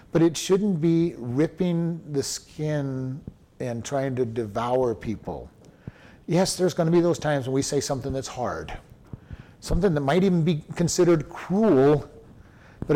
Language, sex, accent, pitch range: English, male, American, 130-160 Hz